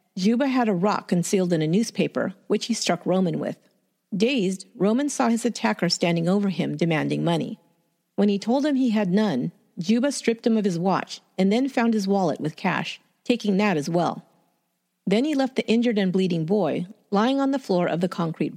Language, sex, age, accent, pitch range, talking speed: English, female, 50-69, American, 175-235 Hz, 200 wpm